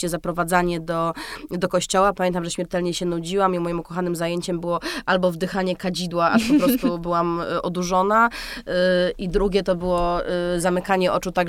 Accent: native